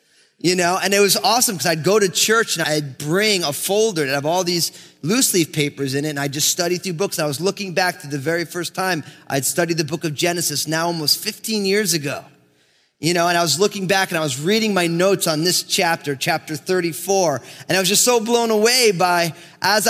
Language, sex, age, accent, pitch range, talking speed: English, male, 20-39, American, 165-210 Hz, 235 wpm